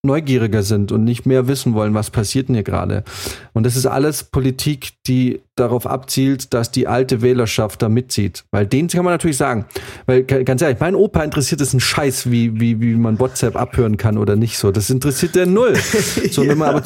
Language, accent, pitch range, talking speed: German, German, 120-140 Hz, 210 wpm